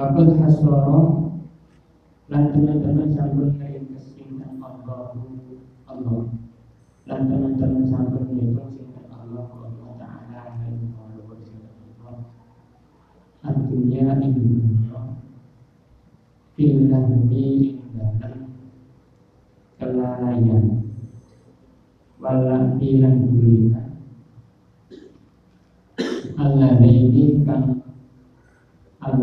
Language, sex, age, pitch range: Indonesian, male, 50-69, 115-135 Hz